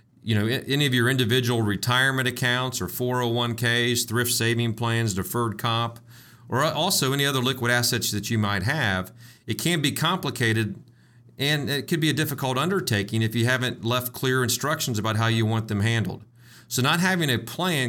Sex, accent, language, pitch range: male, American, English, 110-130 Hz